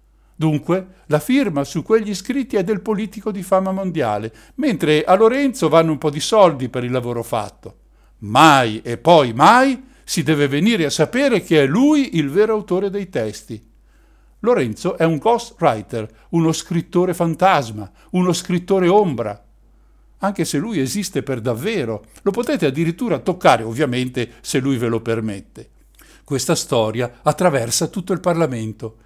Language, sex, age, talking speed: Italian, male, 60-79, 150 wpm